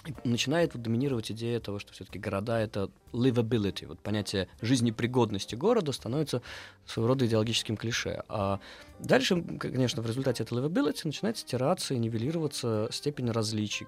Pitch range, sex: 105-130 Hz, male